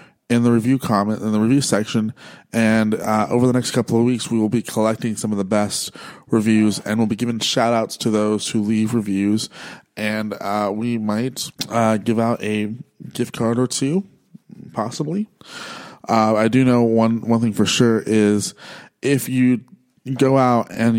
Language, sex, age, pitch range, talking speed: English, male, 20-39, 100-115 Hz, 180 wpm